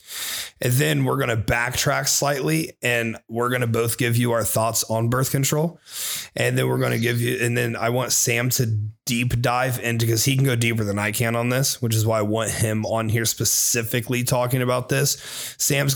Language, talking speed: English, 220 wpm